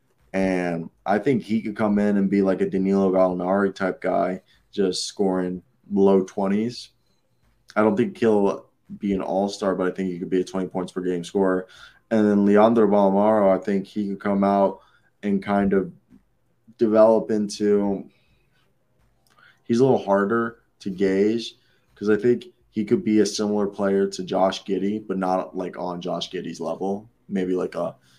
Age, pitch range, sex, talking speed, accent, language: 20-39, 90-105 Hz, male, 175 wpm, American, English